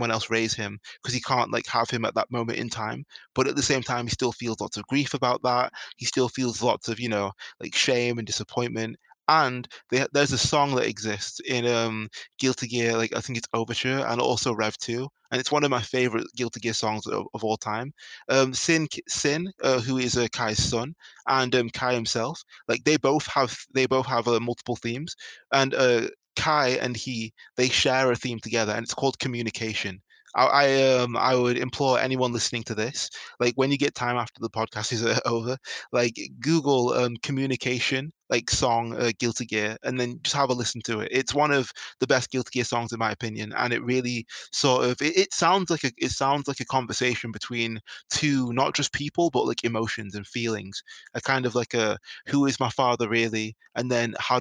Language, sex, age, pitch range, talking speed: English, male, 20-39, 115-130 Hz, 215 wpm